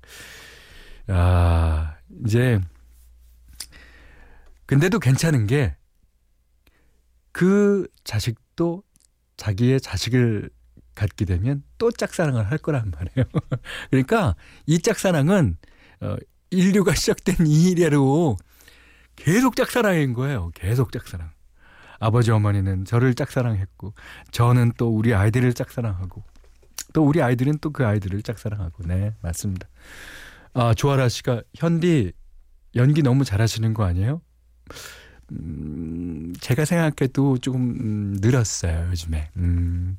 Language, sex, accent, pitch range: Korean, male, native, 85-140 Hz